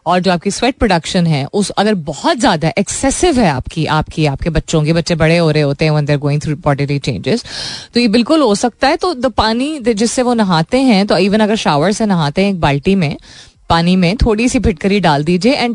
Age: 20-39